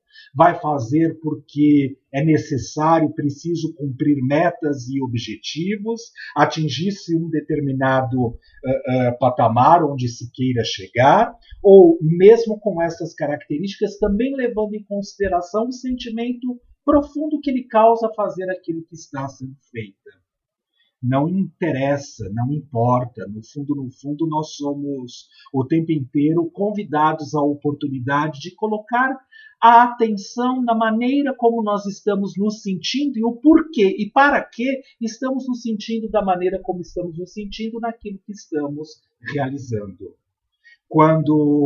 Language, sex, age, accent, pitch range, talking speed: Portuguese, male, 50-69, Brazilian, 145-220 Hz, 125 wpm